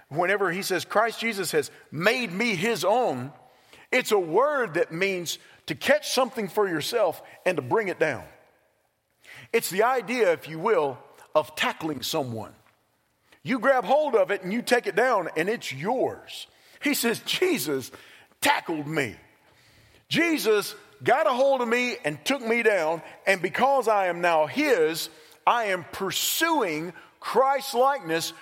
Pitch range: 175-250 Hz